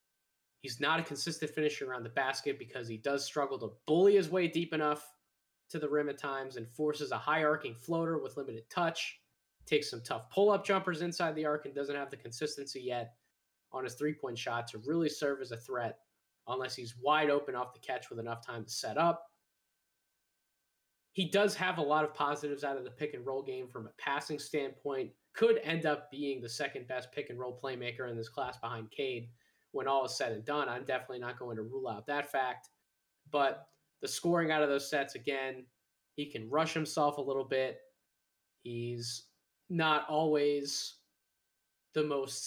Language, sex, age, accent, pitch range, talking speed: English, male, 20-39, American, 130-155 Hz, 185 wpm